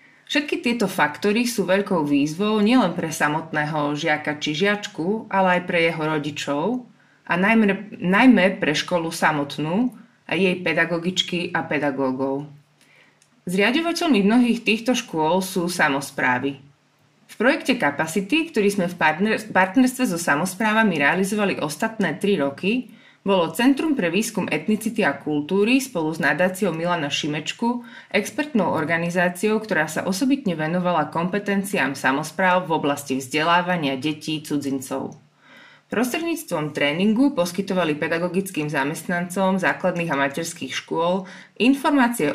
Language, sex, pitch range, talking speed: Slovak, female, 155-210 Hz, 115 wpm